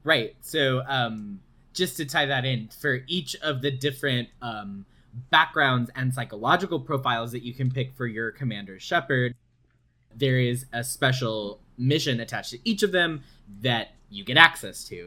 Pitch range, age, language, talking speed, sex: 120-140 Hz, 20-39, English, 165 wpm, male